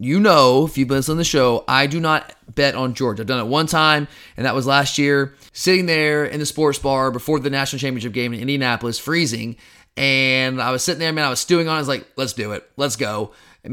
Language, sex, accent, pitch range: English, male, American, 130-160 Hz